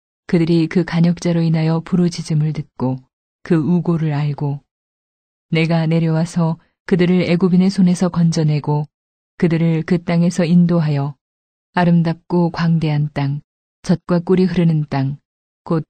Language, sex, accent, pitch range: Korean, female, native, 150-175 Hz